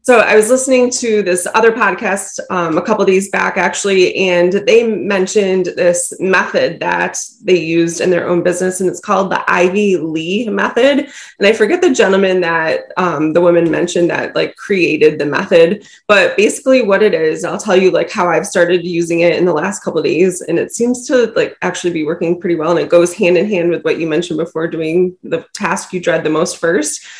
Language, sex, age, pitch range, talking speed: English, female, 20-39, 170-210 Hz, 215 wpm